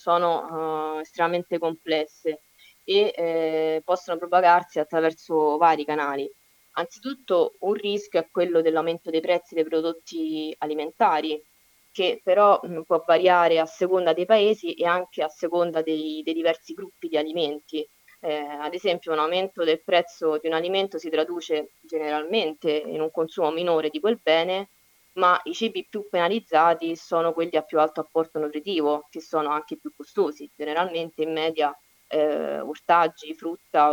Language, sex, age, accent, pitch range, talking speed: Italian, female, 20-39, native, 155-180 Hz, 145 wpm